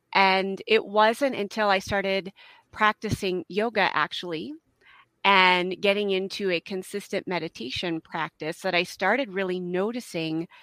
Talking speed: 120 wpm